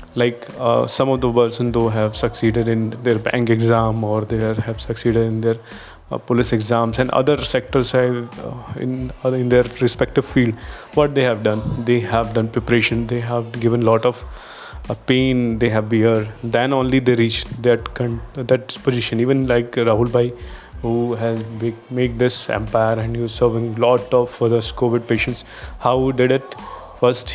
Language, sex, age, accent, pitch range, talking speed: Hindi, male, 20-39, native, 115-125 Hz, 185 wpm